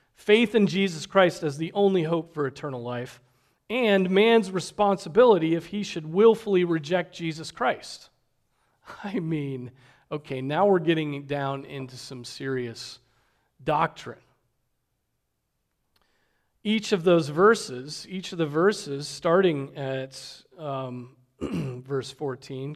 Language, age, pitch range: English, 40-59, 135-185 Hz